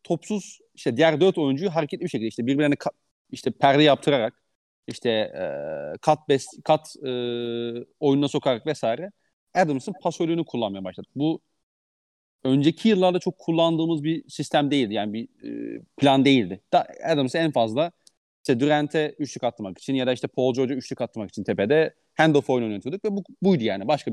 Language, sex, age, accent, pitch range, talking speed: Turkish, male, 40-59, native, 125-165 Hz, 165 wpm